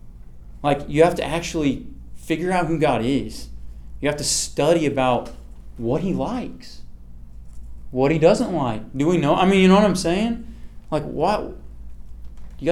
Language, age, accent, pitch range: English, 30-49, American, 115-185 Hz